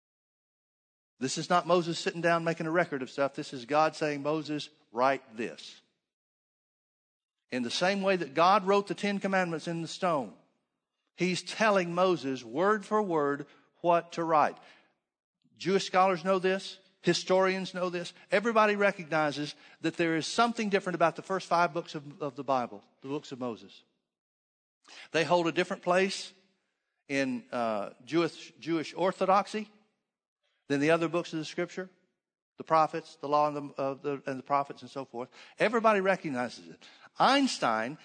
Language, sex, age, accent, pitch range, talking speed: English, male, 50-69, American, 150-195 Hz, 160 wpm